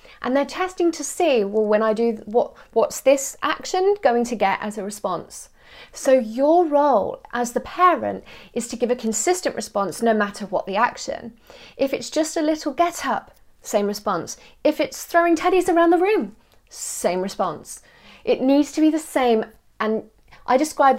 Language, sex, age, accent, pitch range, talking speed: English, female, 30-49, British, 210-295 Hz, 180 wpm